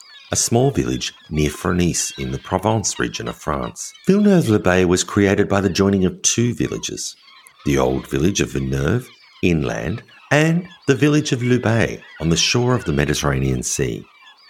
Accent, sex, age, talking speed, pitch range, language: Australian, male, 50-69, 165 wpm, 85-125 Hz, English